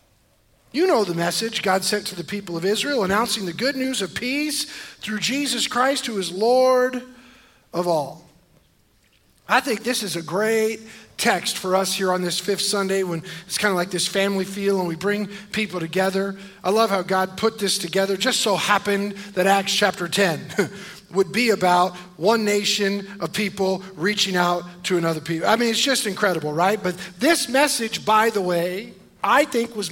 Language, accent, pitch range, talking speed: English, American, 180-235 Hz, 185 wpm